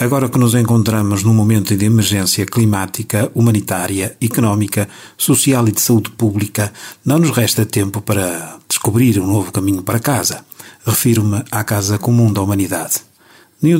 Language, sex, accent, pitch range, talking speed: Portuguese, male, Portuguese, 100-125 Hz, 150 wpm